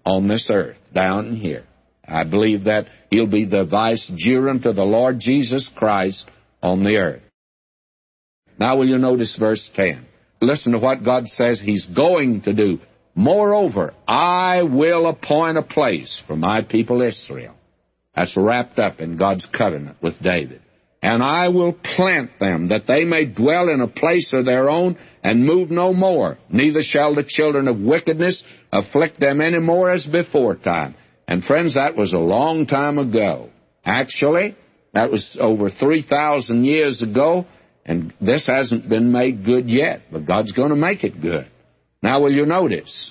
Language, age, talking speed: English, 60-79, 165 wpm